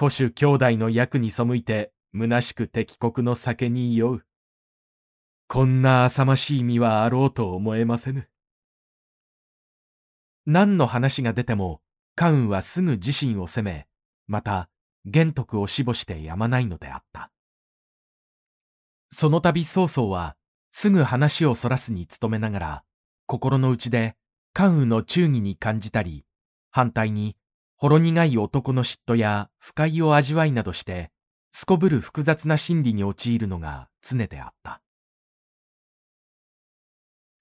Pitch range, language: 95-145 Hz, Japanese